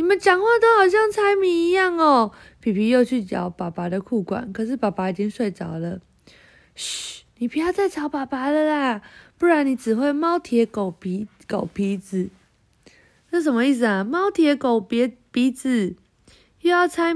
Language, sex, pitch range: Chinese, female, 200-310 Hz